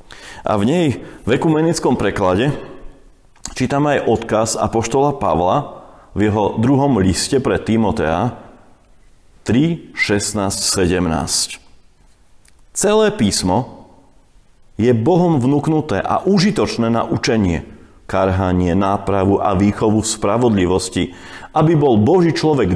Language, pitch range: Slovak, 95-130 Hz